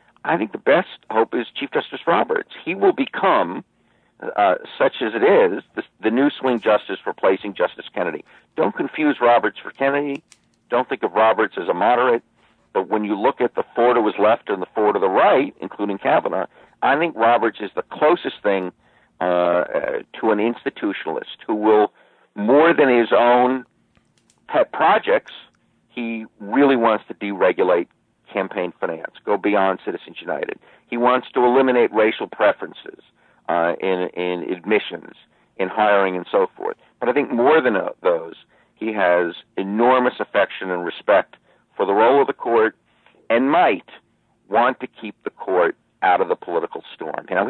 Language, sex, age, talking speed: English, male, 50-69, 170 wpm